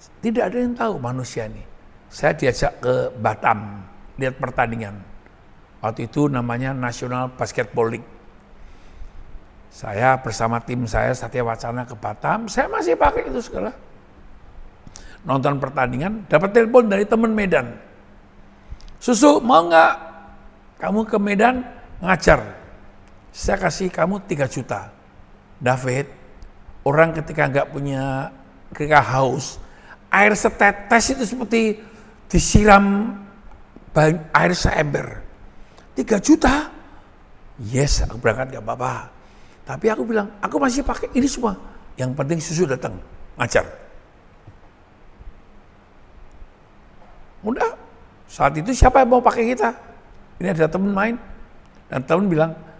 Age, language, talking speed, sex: 60-79, Indonesian, 115 wpm, male